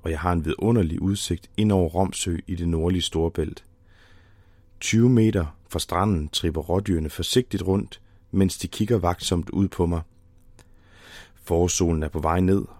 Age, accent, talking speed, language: 30-49, native, 155 wpm, Danish